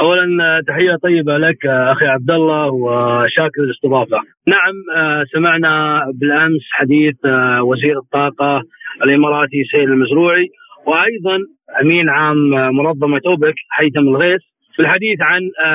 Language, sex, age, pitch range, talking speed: Arabic, male, 30-49, 140-160 Hz, 105 wpm